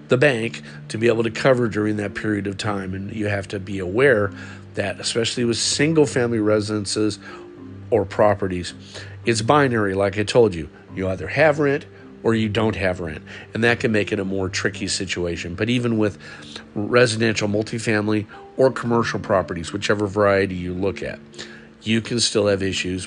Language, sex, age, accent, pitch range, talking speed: English, male, 50-69, American, 95-115 Hz, 175 wpm